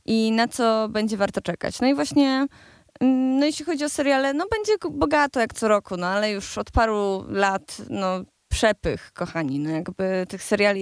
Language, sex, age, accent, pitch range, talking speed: Polish, female, 20-39, native, 185-225 Hz, 155 wpm